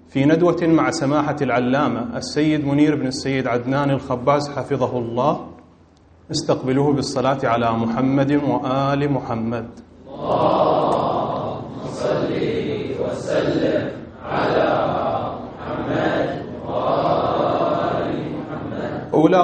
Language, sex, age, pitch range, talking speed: Arabic, male, 30-49, 130-155 Hz, 60 wpm